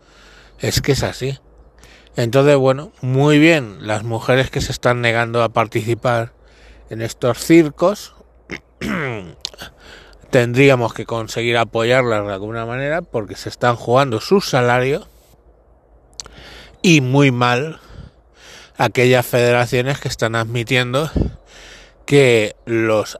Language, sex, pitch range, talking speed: Spanish, male, 110-135 Hz, 110 wpm